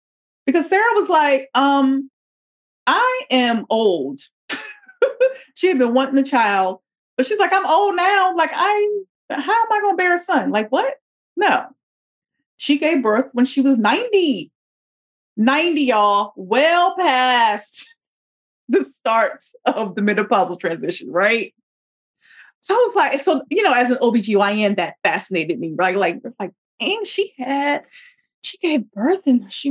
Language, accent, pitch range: English, American, 200-305 Hz